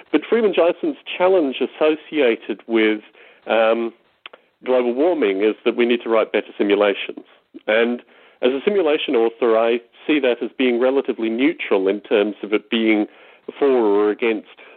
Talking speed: 145 wpm